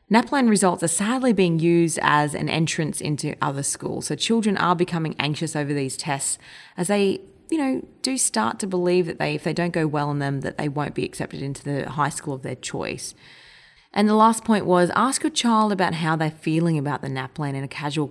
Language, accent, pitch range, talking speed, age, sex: English, Australian, 140-190 Hz, 220 wpm, 30-49, female